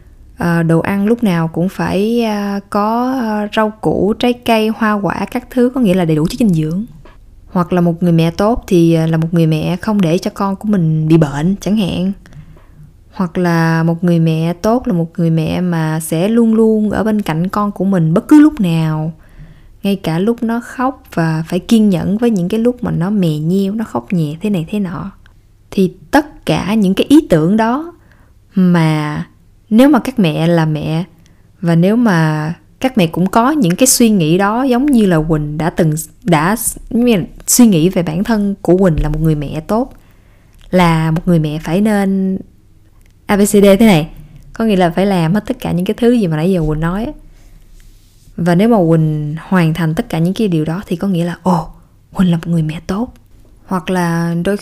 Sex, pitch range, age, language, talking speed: female, 165-215 Hz, 20-39, Vietnamese, 210 wpm